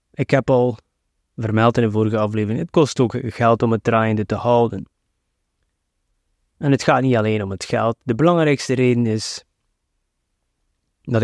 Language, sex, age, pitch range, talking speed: Dutch, male, 20-39, 100-145 Hz, 160 wpm